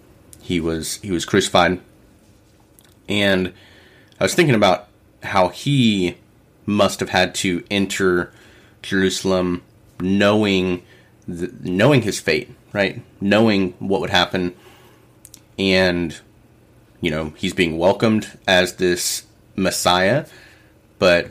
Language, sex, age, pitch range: English, male, 30-49, 90-105 Hz